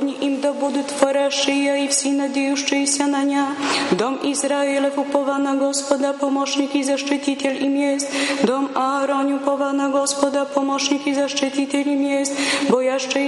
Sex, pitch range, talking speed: female, 275-280 Hz, 135 wpm